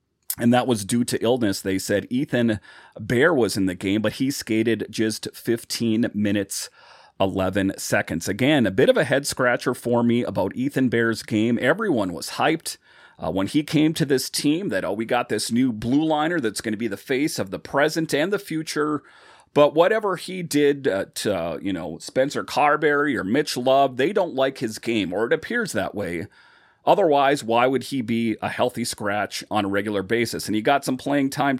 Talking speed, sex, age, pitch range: 205 wpm, male, 30-49, 110-145 Hz